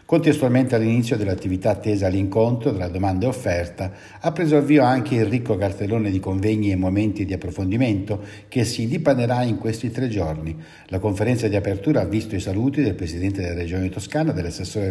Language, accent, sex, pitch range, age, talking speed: Italian, native, male, 95-130 Hz, 60-79, 175 wpm